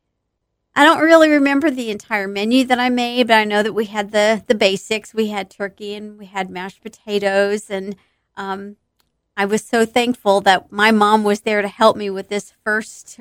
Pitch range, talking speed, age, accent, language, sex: 200-245 Hz, 200 wpm, 40-59, American, English, female